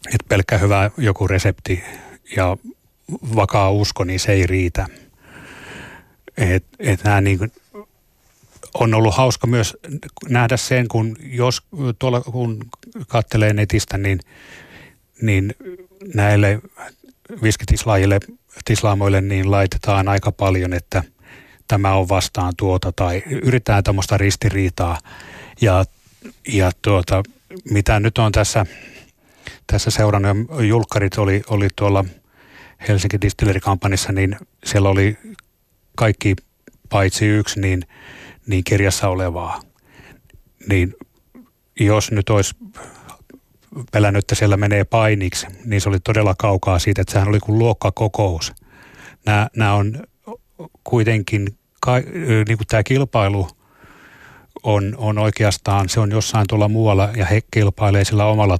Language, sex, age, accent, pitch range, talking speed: Finnish, male, 30-49, native, 95-110 Hz, 115 wpm